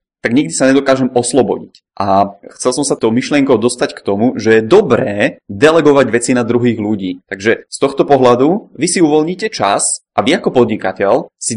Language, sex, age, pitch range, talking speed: Czech, male, 20-39, 110-135 Hz, 175 wpm